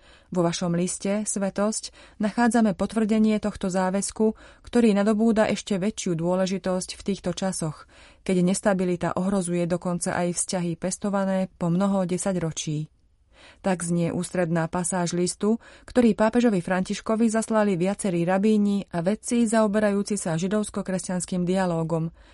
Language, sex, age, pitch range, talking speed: Slovak, female, 30-49, 180-205 Hz, 115 wpm